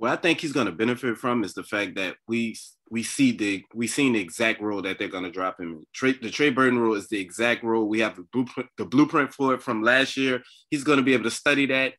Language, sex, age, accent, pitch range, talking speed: English, male, 20-39, American, 105-130 Hz, 280 wpm